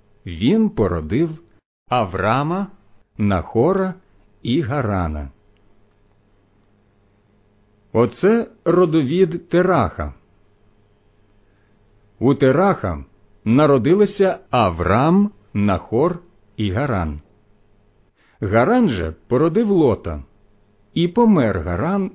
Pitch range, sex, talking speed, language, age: 100-165 Hz, male, 60 wpm, Ukrainian, 50-69